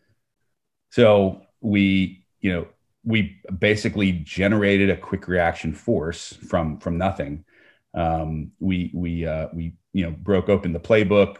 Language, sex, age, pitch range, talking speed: English, male, 30-49, 85-100 Hz, 130 wpm